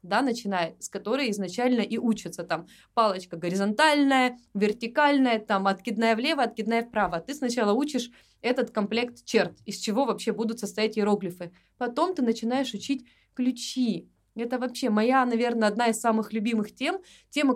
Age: 20-39